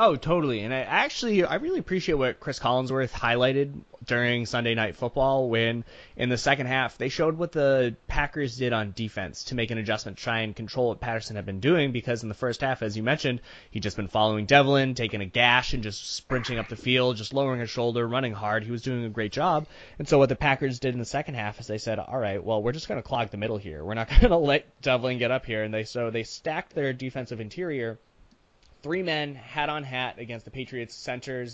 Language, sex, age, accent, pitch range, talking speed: English, male, 20-39, American, 110-135 Hz, 240 wpm